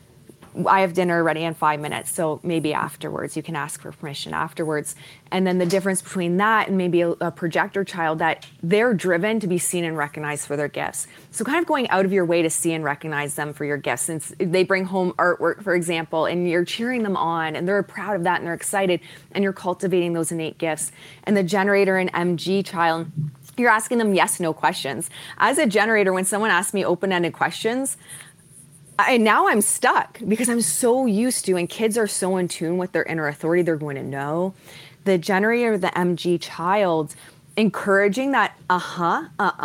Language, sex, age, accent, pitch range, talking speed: English, female, 20-39, American, 155-195 Hz, 205 wpm